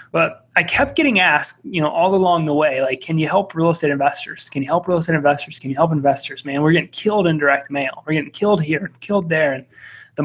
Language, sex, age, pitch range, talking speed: English, male, 20-39, 145-170 Hz, 250 wpm